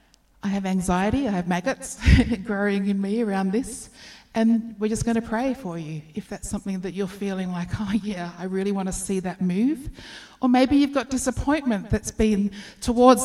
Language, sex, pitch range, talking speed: German, female, 190-230 Hz, 195 wpm